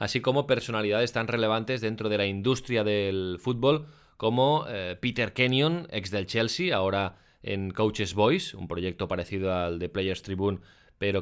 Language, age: Spanish, 20-39